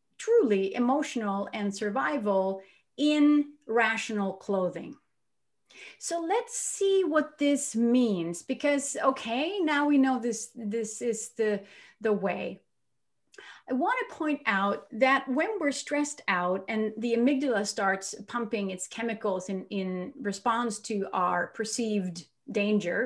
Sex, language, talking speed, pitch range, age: female, English, 125 wpm, 200-280 Hz, 30-49